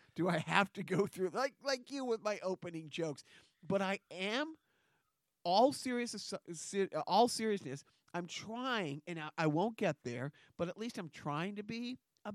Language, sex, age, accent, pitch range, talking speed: English, male, 40-59, American, 145-185 Hz, 170 wpm